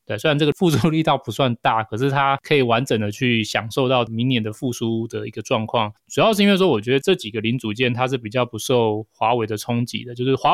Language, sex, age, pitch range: Chinese, male, 20-39, 110-145 Hz